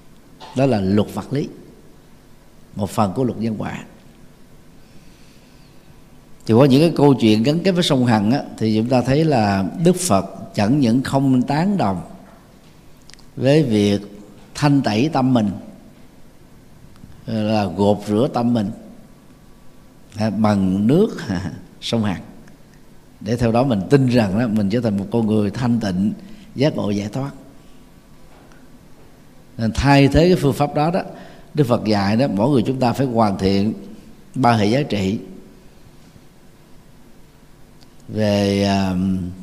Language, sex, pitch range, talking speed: Vietnamese, male, 105-140 Hz, 140 wpm